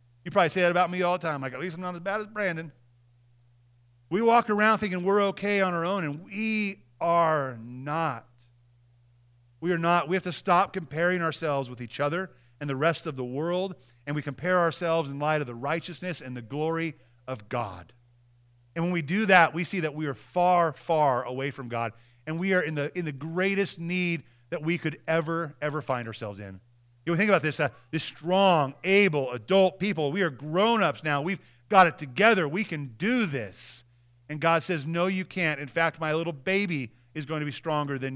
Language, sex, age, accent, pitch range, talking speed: English, male, 30-49, American, 120-175 Hz, 210 wpm